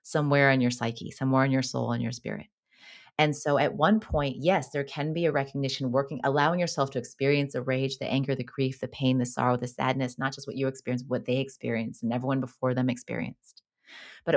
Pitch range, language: 125-140 Hz, English